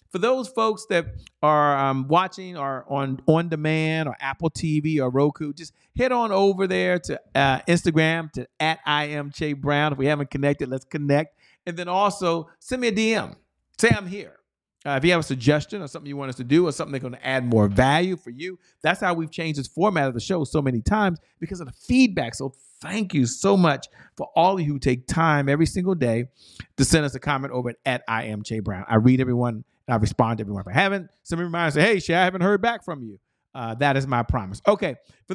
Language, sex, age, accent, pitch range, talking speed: English, male, 40-59, American, 135-190 Hz, 235 wpm